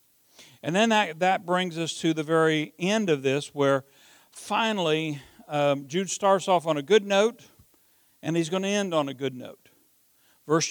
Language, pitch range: English, 145-190 Hz